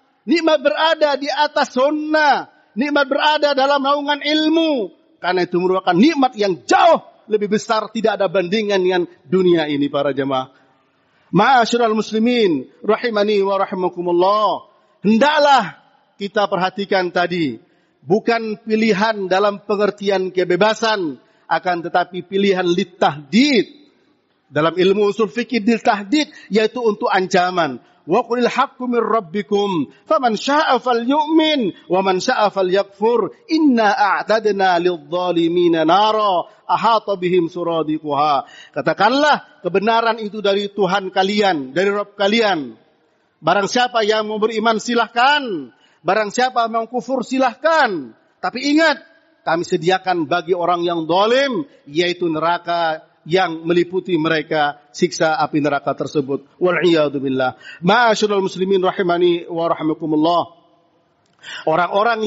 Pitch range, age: 180-245 Hz, 50-69